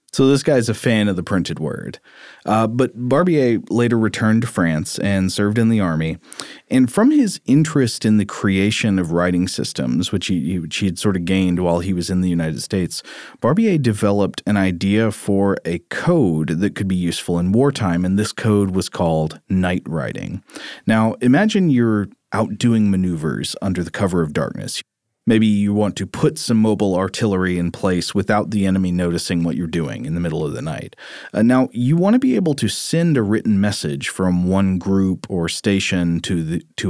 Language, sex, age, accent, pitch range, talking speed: English, male, 30-49, American, 90-110 Hz, 190 wpm